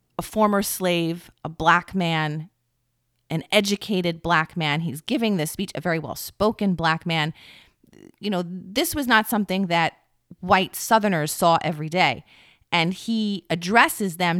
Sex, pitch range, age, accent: female, 160-195 Hz, 30-49, American